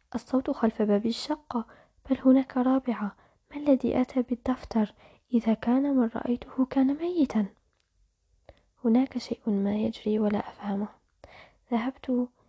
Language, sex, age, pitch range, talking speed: Arabic, female, 20-39, 205-245 Hz, 115 wpm